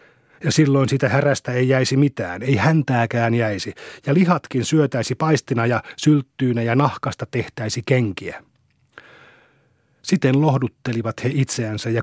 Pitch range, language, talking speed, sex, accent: 115-140 Hz, Finnish, 125 wpm, male, native